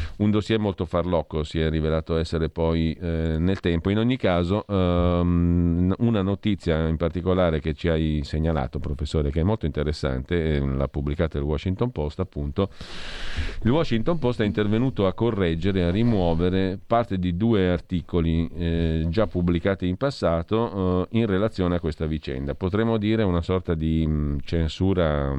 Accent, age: native, 50-69